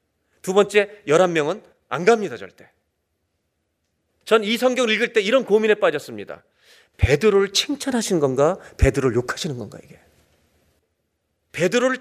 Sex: male